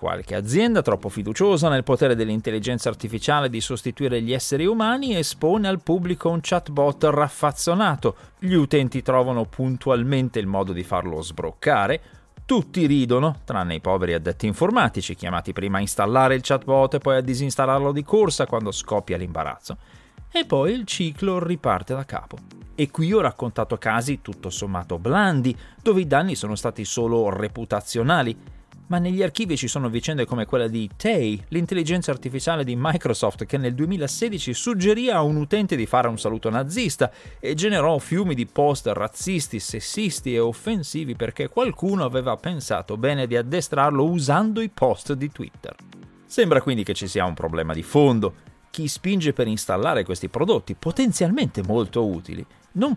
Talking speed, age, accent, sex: 155 wpm, 30-49, native, male